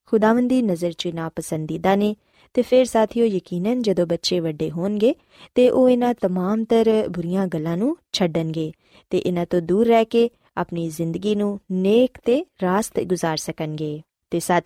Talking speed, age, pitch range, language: 145 wpm, 20-39, 175-240 Hz, Punjabi